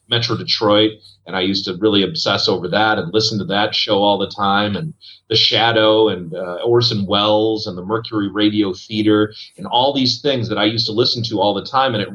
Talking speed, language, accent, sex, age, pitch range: 220 wpm, English, American, male, 30-49, 105-125 Hz